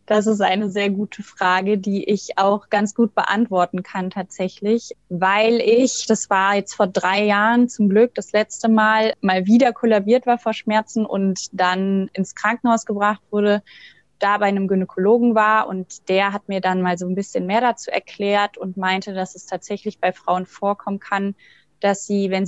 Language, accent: German, German